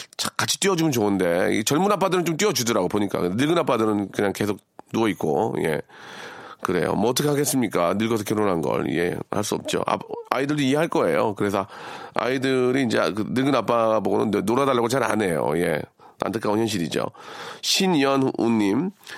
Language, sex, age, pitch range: Korean, male, 40-59, 105-150 Hz